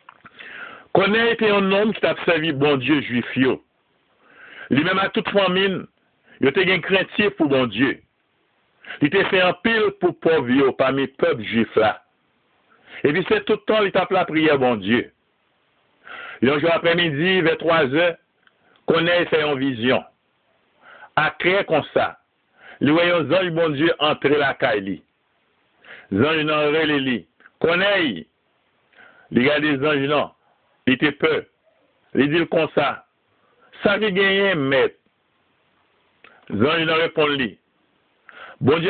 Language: French